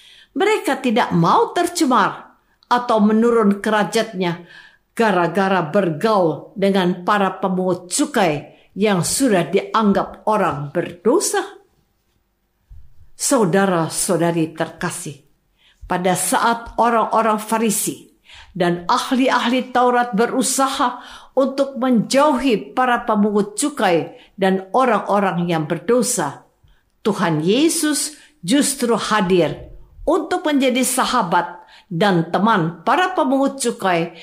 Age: 50-69